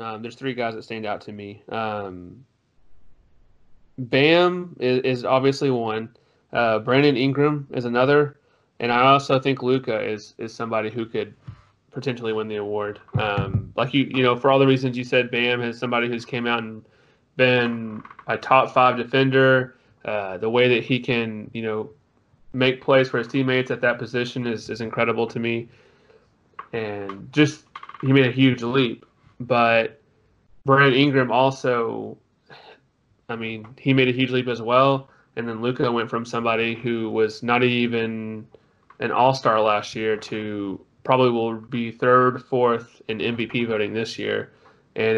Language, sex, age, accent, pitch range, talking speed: English, male, 30-49, American, 110-130 Hz, 165 wpm